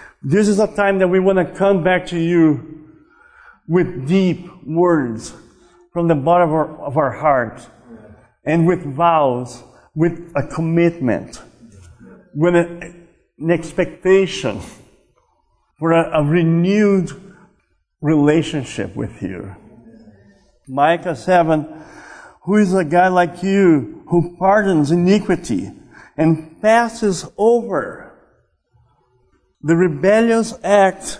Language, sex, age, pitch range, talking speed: English, male, 50-69, 145-190 Hz, 105 wpm